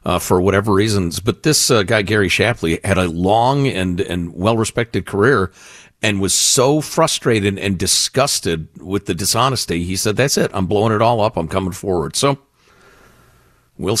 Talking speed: 170 wpm